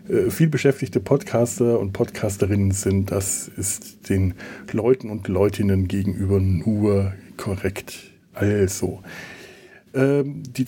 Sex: male